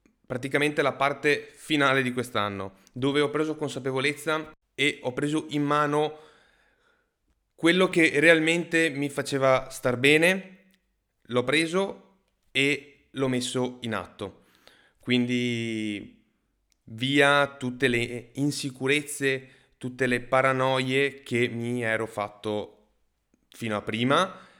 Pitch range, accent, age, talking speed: 120-155 Hz, native, 30-49, 105 wpm